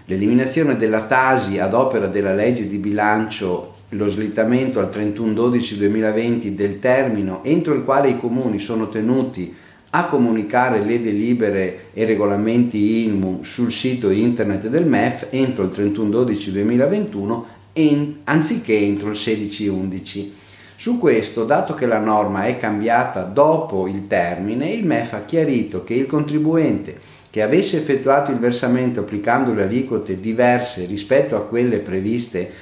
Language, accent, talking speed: Italian, native, 130 wpm